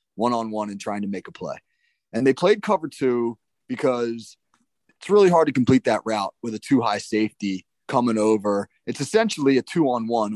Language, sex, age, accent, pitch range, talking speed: English, male, 30-49, American, 110-145 Hz, 175 wpm